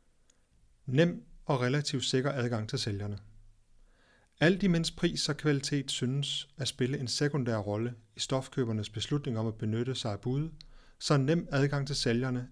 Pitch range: 115-145 Hz